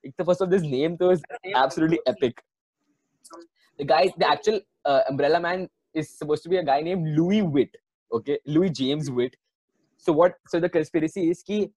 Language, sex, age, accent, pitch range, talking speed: English, male, 20-39, Indian, 145-210 Hz, 185 wpm